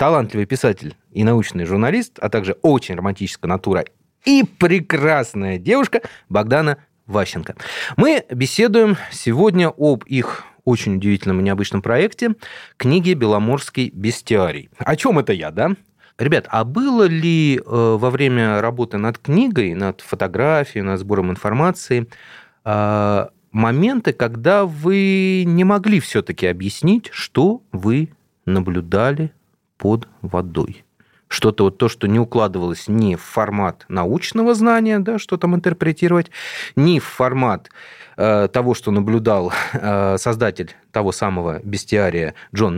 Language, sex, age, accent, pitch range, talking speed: Russian, male, 30-49, native, 105-165 Hz, 120 wpm